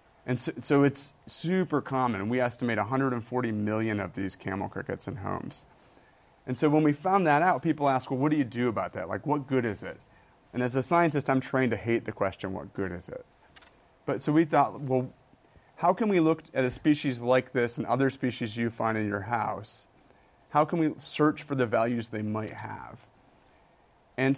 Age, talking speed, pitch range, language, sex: 30-49, 205 wpm, 110-140 Hz, English, male